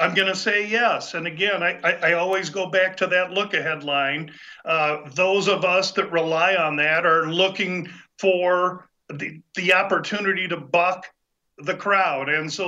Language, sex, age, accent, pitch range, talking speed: English, male, 50-69, American, 175-200 Hz, 175 wpm